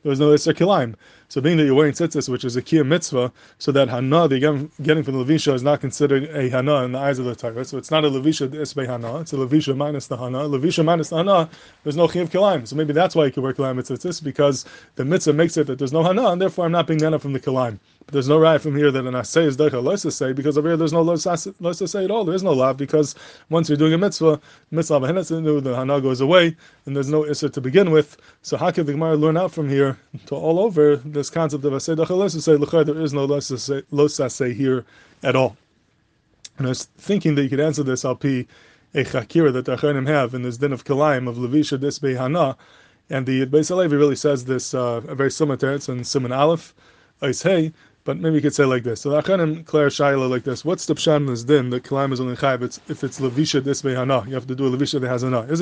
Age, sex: 20-39, male